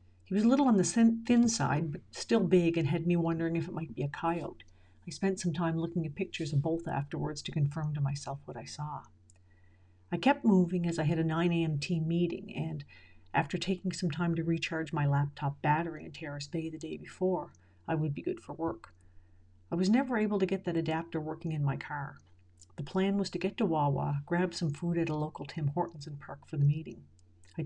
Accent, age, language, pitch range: American, 50-69, English, 140-175 Hz